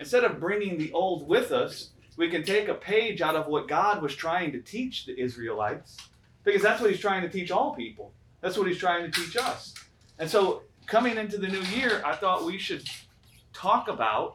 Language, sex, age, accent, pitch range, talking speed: English, male, 30-49, American, 155-245 Hz, 215 wpm